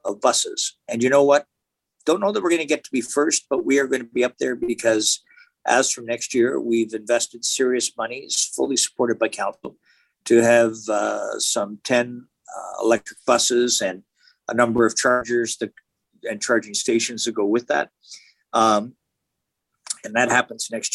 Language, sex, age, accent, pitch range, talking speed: English, male, 50-69, American, 110-125 Hz, 180 wpm